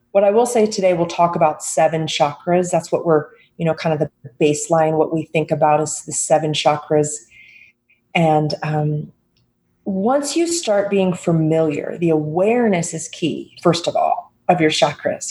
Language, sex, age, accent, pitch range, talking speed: English, female, 30-49, American, 150-200 Hz, 175 wpm